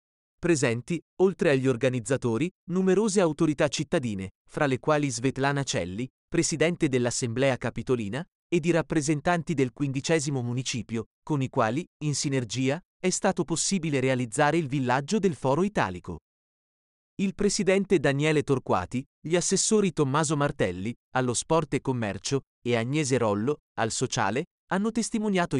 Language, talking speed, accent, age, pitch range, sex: Italian, 125 wpm, native, 30-49, 130-175 Hz, male